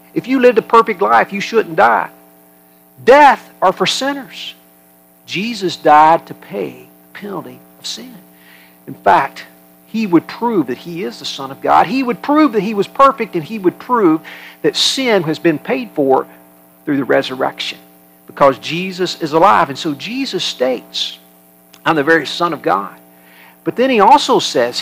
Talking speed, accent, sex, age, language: 175 wpm, American, male, 50-69, English